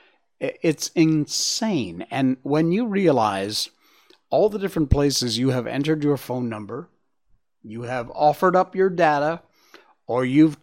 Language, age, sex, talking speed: English, 50-69, male, 135 wpm